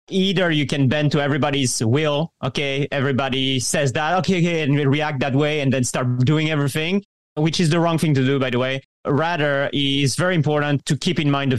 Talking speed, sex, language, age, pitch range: 210 wpm, male, English, 30-49, 140-175 Hz